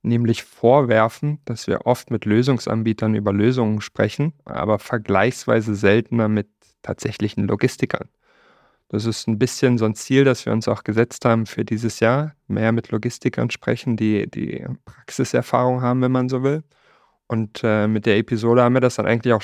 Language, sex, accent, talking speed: German, male, German, 170 wpm